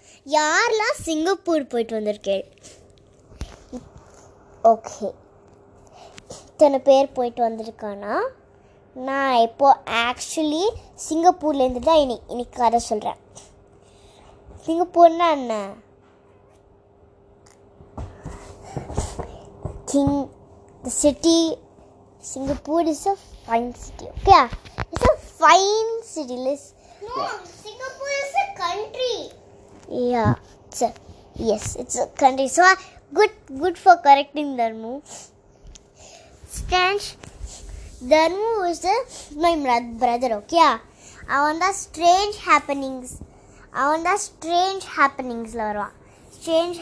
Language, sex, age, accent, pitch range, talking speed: Tamil, male, 20-39, native, 235-345 Hz, 80 wpm